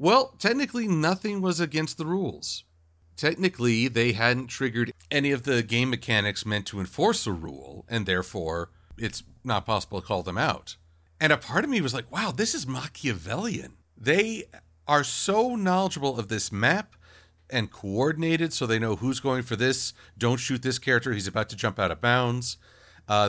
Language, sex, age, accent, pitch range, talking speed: English, male, 50-69, American, 95-145 Hz, 180 wpm